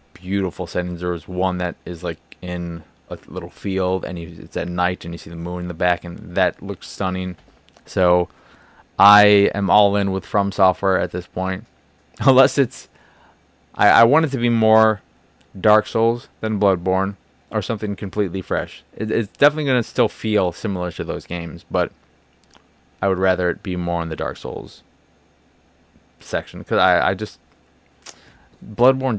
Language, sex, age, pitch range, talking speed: English, male, 20-39, 90-105 Hz, 175 wpm